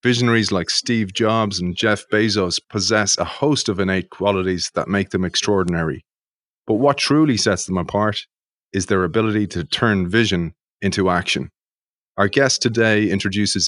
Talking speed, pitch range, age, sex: 155 wpm, 95-115 Hz, 30-49, male